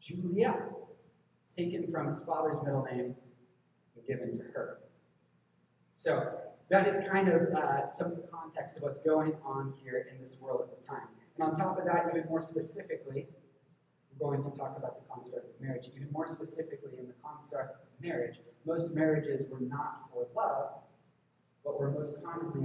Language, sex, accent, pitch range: English, male, American, 125-170 Hz